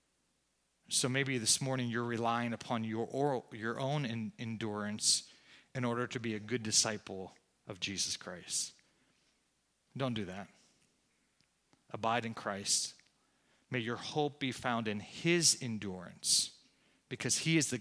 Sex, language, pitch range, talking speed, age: male, English, 110-135 Hz, 140 wpm, 40-59